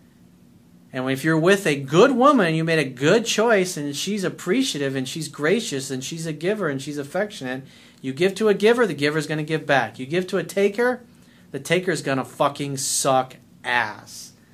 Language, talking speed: English, 200 wpm